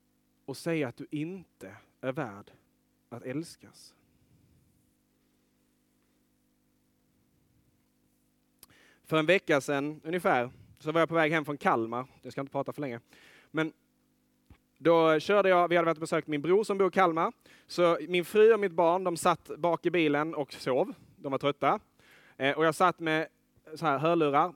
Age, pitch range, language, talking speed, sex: 30-49, 145-180 Hz, Swedish, 160 wpm, male